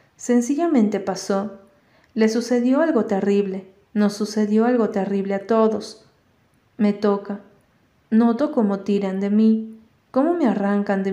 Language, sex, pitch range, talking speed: Spanish, female, 195-220 Hz, 125 wpm